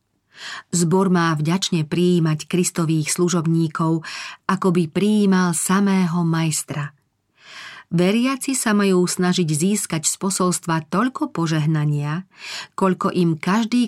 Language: Slovak